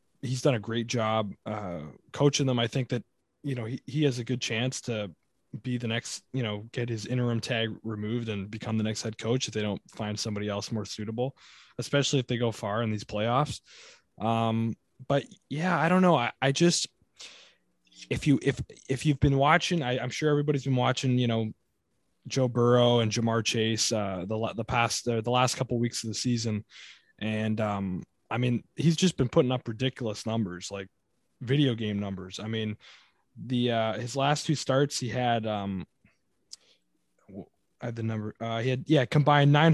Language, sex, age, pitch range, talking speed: English, male, 20-39, 110-135 Hz, 195 wpm